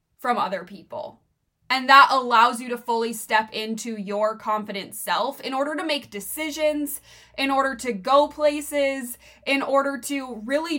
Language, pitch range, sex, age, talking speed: English, 215-275 Hz, female, 20-39, 155 wpm